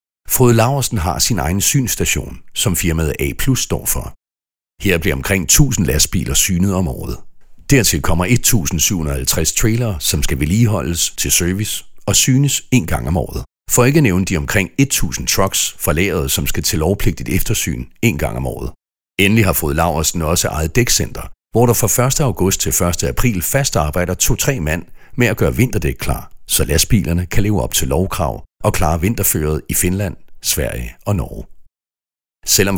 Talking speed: 170 wpm